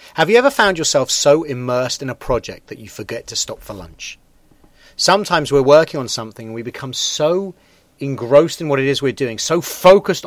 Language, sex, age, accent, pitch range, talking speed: English, male, 40-59, British, 125-160 Hz, 205 wpm